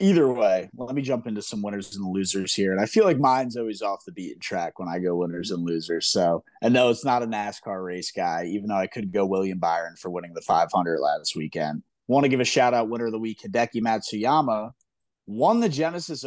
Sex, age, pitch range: male, 30-49, 100-150 Hz